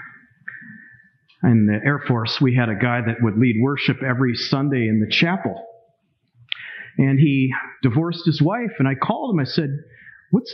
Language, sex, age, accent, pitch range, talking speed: English, male, 40-59, American, 130-170 Hz, 165 wpm